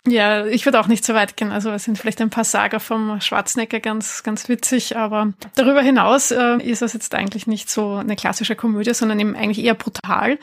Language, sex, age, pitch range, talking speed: German, female, 20-39, 215-245 Hz, 220 wpm